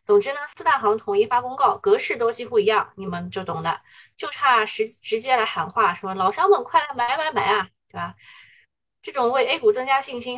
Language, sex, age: Chinese, female, 20-39